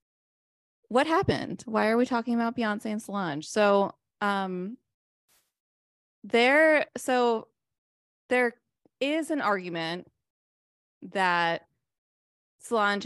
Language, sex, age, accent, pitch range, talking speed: English, female, 20-39, American, 165-205 Hz, 90 wpm